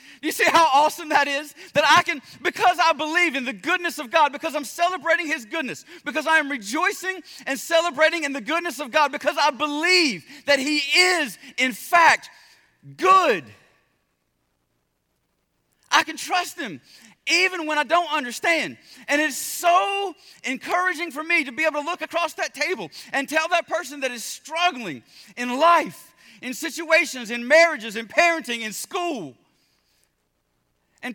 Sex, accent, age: male, American, 40-59